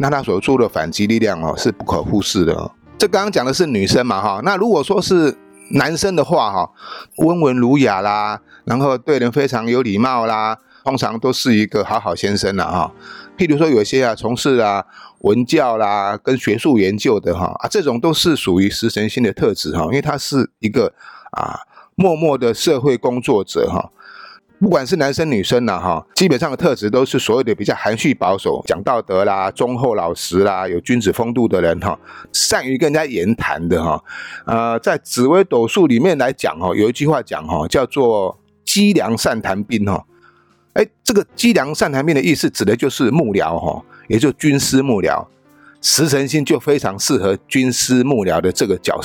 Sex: male